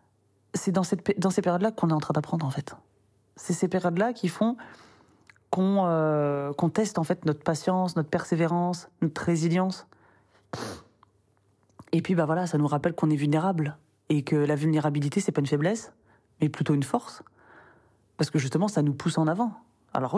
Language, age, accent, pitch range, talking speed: French, 20-39, French, 140-170 Hz, 185 wpm